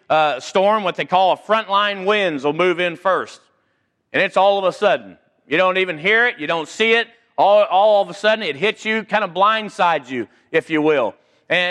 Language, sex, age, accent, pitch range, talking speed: English, male, 40-59, American, 150-205 Hz, 220 wpm